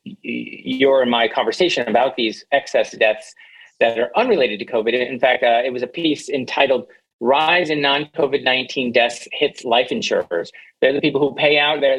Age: 40-59